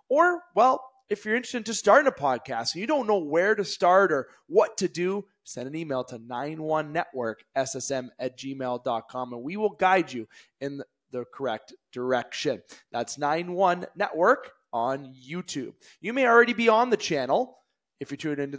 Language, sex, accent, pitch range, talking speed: English, male, American, 140-195 Hz, 170 wpm